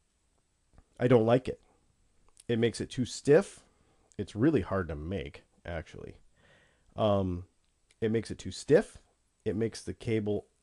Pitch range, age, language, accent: 95-115 Hz, 30-49, English, American